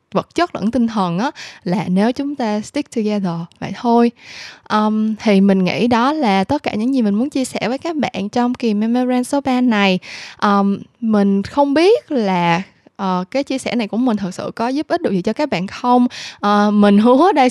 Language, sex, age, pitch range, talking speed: Vietnamese, female, 10-29, 190-250 Hz, 215 wpm